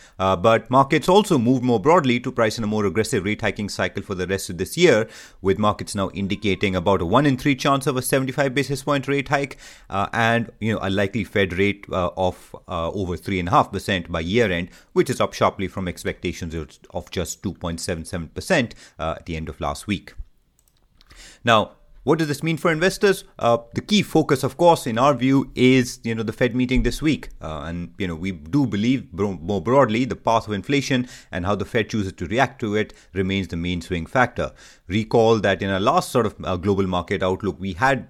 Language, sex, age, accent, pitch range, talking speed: English, male, 30-49, Indian, 90-125 Hz, 210 wpm